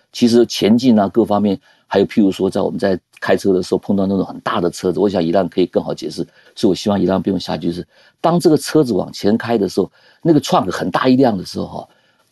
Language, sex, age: Chinese, male, 50-69